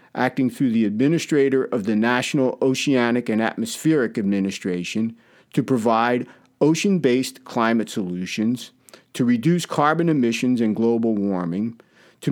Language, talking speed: English, 115 wpm